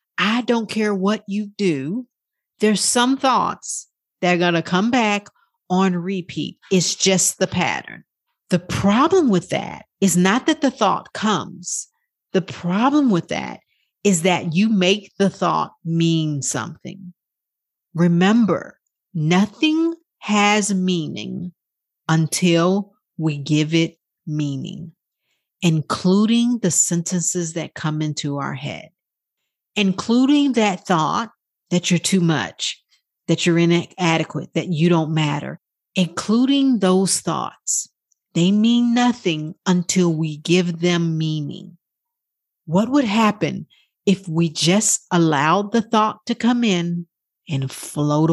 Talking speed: 125 wpm